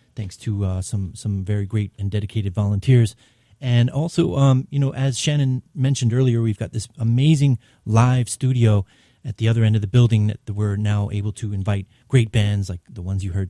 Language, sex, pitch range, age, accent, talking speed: English, male, 105-130 Hz, 30-49, American, 200 wpm